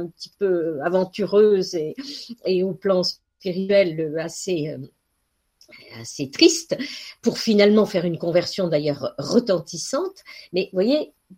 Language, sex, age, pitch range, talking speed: French, female, 50-69, 165-215 Hz, 115 wpm